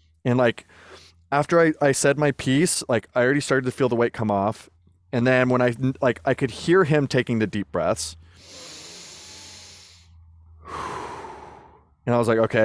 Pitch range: 105-135 Hz